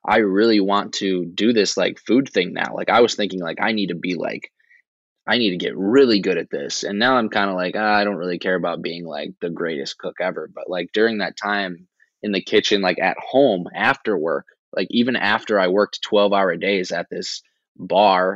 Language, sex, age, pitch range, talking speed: English, male, 20-39, 90-100 Hz, 225 wpm